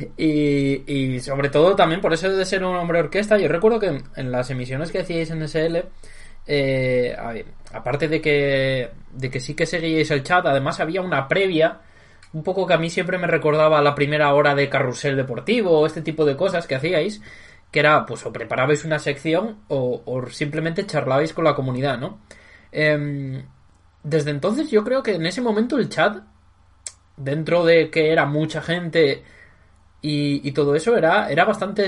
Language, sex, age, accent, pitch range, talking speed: Spanish, male, 20-39, Spanish, 135-165 Hz, 185 wpm